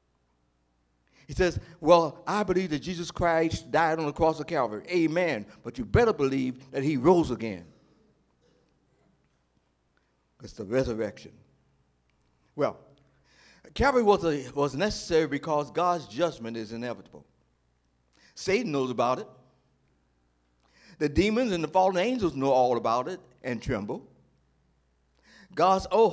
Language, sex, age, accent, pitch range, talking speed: English, male, 60-79, American, 110-180 Hz, 125 wpm